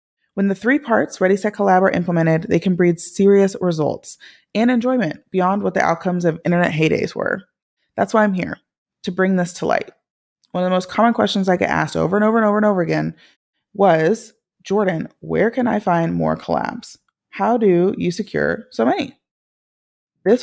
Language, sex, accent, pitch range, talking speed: English, female, American, 165-210 Hz, 190 wpm